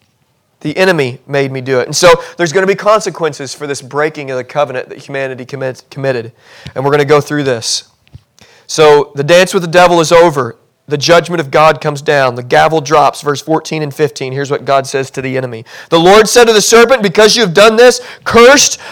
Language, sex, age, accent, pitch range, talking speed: English, male, 40-59, American, 155-200 Hz, 220 wpm